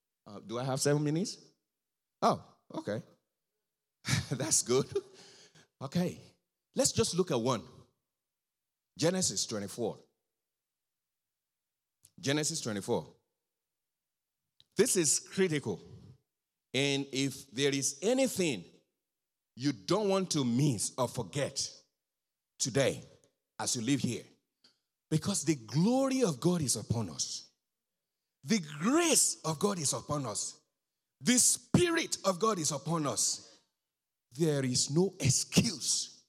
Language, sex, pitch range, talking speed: English, male, 130-185 Hz, 105 wpm